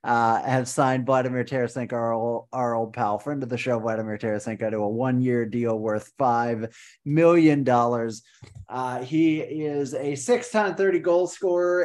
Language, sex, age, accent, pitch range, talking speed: English, male, 30-49, American, 115-140 Hz, 145 wpm